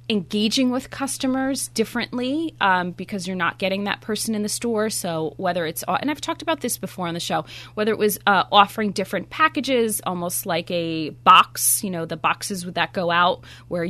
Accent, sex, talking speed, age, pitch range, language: American, female, 195 wpm, 20-39, 170-220 Hz, English